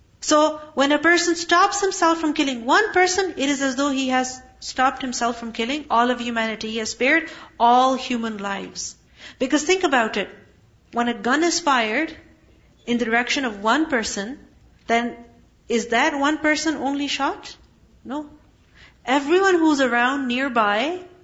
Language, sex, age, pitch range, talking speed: English, female, 40-59, 235-310 Hz, 160 wpm